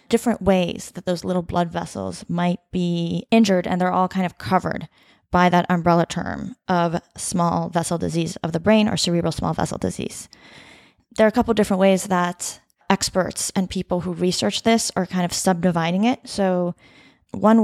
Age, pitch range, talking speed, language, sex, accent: 20-39, 175-205 Hz, 175 wpm, English, female, American